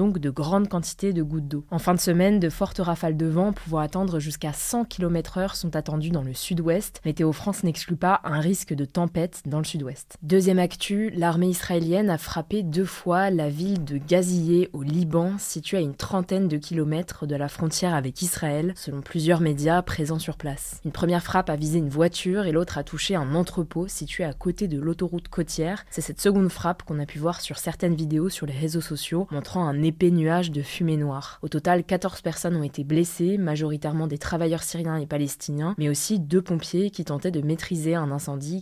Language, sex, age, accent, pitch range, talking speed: French, female, 20-39, French, 155-185 Hz, 205 wpm